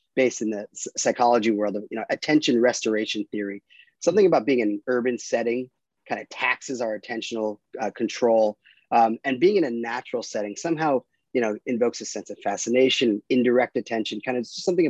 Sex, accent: male, American